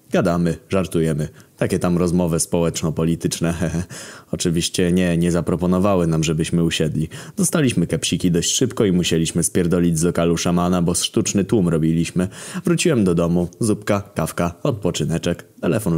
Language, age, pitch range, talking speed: Polish, 20-39, 85-95 Hz, 130 wpm